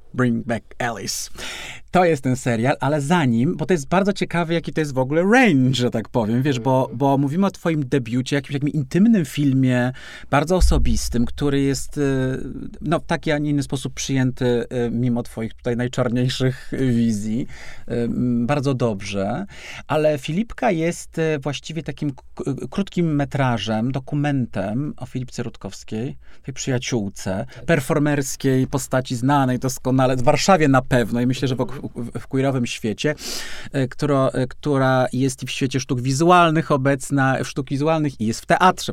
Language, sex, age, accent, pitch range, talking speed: Polish, male, 40-59, native, 125-150 Hz, 150 wpm